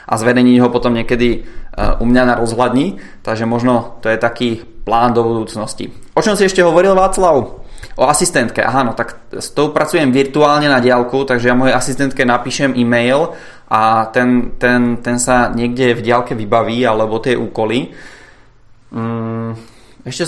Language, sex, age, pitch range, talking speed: Czech, male, 20-39, 120-150 Hz, 160 wpm